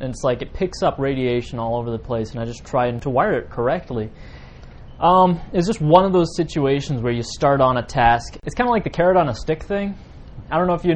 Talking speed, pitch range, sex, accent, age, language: 255 wpm, 120-155 Hz, male, American, 20-39, English